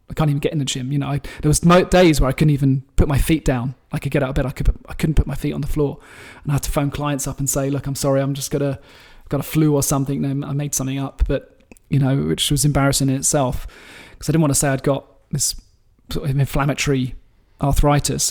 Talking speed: 275 wpm